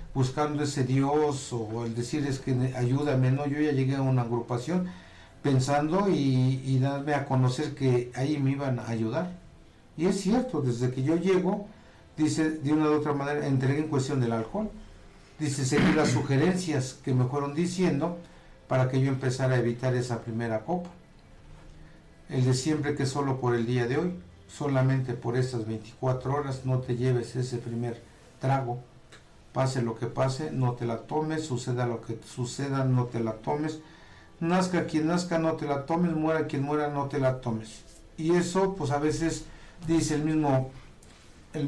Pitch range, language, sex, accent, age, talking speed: 125-155 Hz, Spanish, male, Mexican, 50-69, 175 wpm